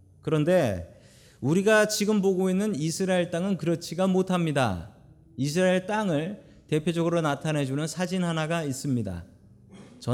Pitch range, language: 115-185 Hz, Korean